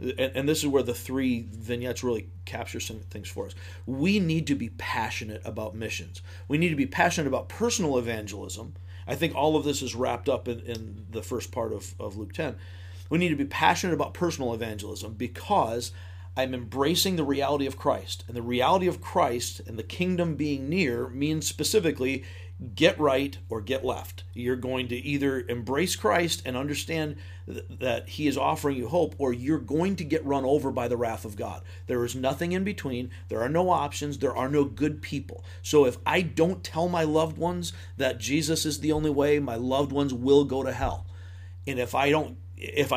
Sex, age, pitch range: male, 50-69, 95-145 Hz